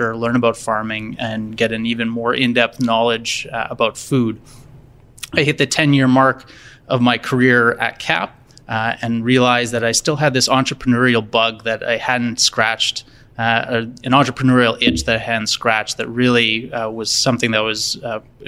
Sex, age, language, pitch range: male, 20-39, English, 115-130 Hz